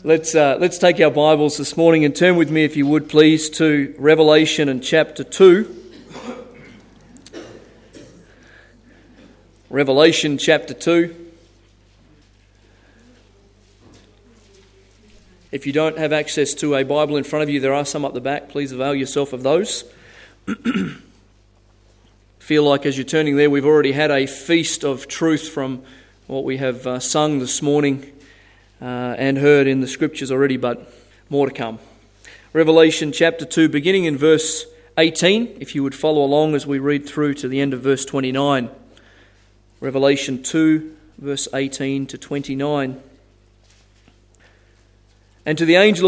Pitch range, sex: 125-155 Hz, male